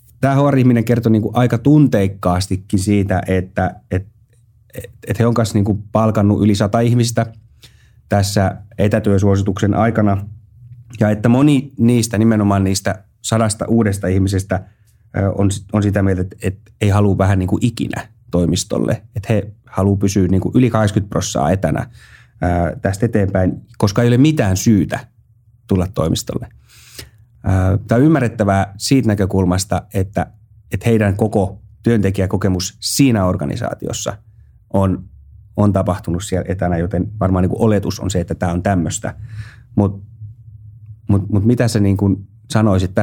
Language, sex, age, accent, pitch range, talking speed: Finnish, male, 30-49, native, 95-115 Hz, 130 wpm